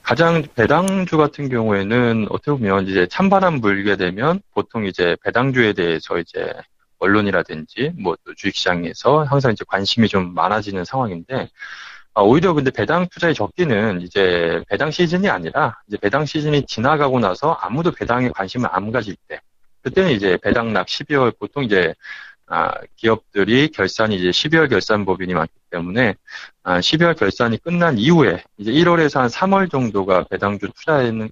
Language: Korean